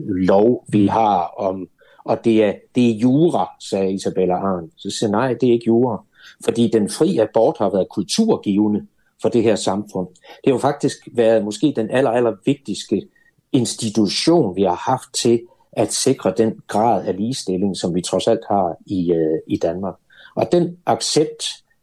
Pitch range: 105-145 Hz